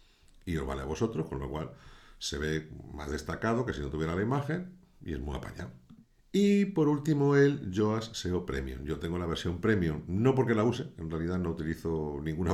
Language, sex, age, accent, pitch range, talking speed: Spanish, male, 50-69, Spanish, 70-105 Hz, 205 wpm